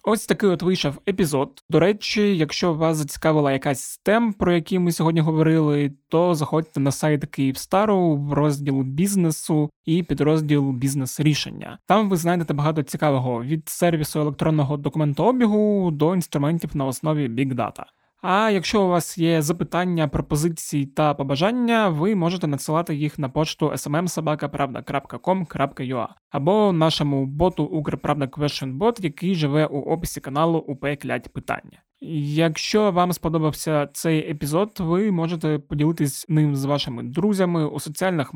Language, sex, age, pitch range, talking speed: Ukrainian, male, 20-39, 145-175 Hz, 135 wpm